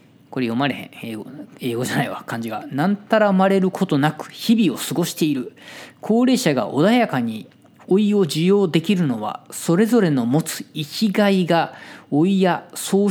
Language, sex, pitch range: Japanese, male, 135-210 Hz